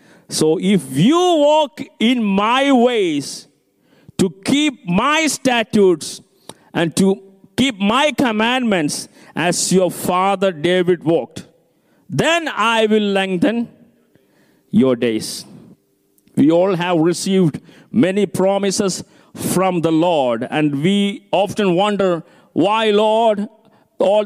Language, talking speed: Malayalam, 105 wpm